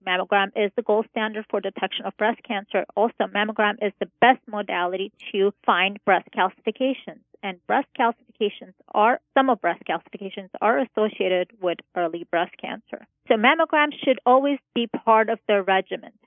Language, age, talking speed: English, 30-49, 160 wpm